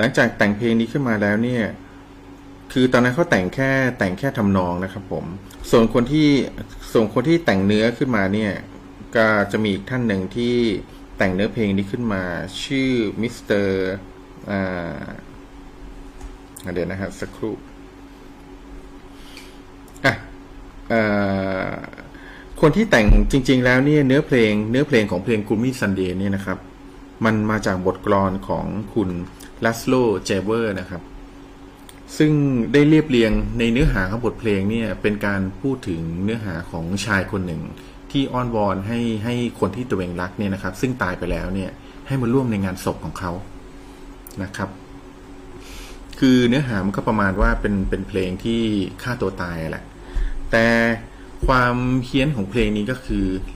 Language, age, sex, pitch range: Thai, 30-49, male, 95-115 Hz